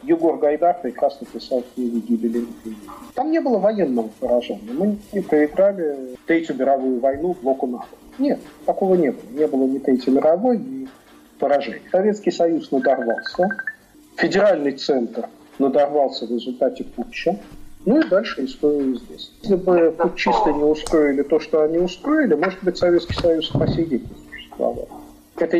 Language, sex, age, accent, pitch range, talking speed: Russian, male, 40-59, native, 135-195 Hz, 135 wpm